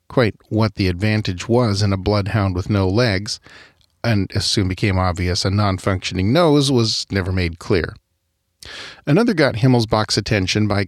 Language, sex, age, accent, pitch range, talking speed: English, male, 40-59, American, 95-125 Hz, 155 wpm